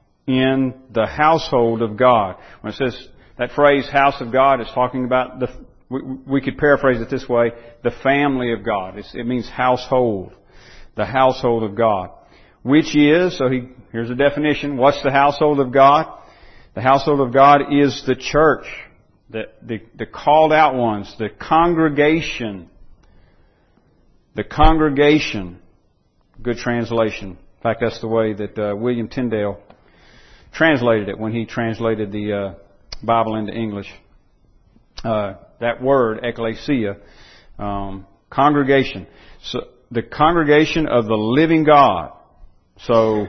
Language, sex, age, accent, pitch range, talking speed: English, male, 50-69, American, 110-135 Hz, 140 wpm